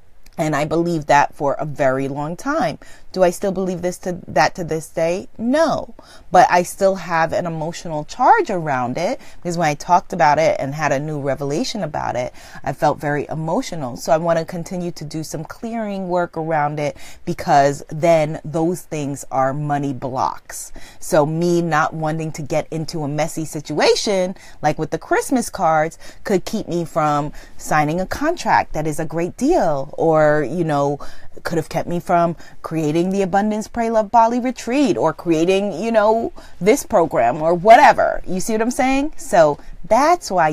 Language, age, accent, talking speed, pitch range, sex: English, 30-49, American, 180 wpm, 150-200 Hz, female